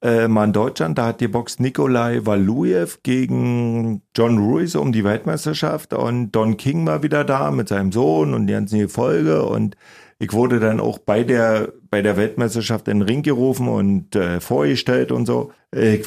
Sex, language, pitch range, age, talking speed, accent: male, German, 105-125 Hz, 40-59, 180 wpm, German